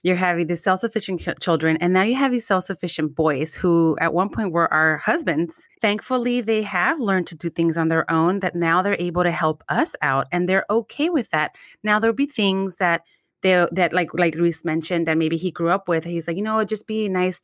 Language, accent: English, American